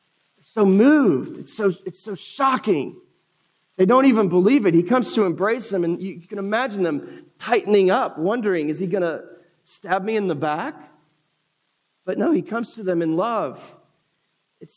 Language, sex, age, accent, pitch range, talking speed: English, male, 40-59, American, 165-220 Hz, 165 wpm